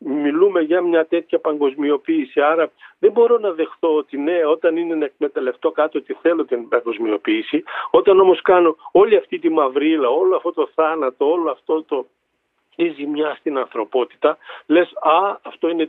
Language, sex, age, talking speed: Greek, male, 50-69, 160 wpm